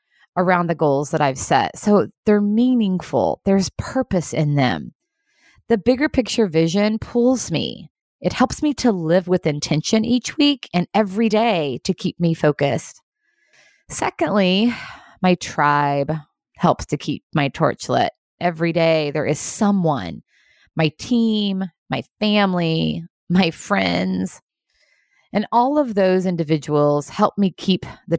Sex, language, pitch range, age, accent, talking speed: female, English, 150-225 Hz, 20-39, American, 135 wpm